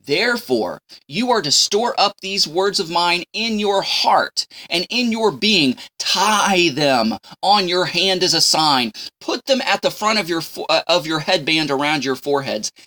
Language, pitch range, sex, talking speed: English, 140-200 Hz, male, 185 wpm